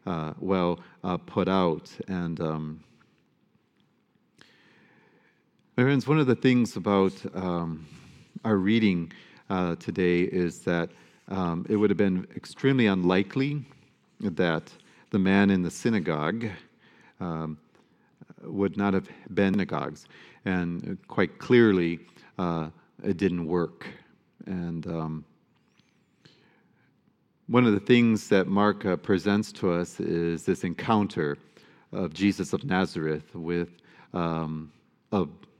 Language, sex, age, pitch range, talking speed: English, male, 40-59, 85-105 Hz, 115 wpm